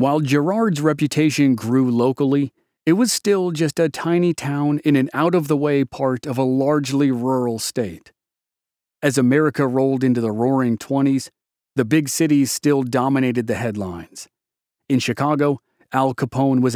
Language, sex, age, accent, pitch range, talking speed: English, male, 40-59, American, 125-145 Hz, 145 wpm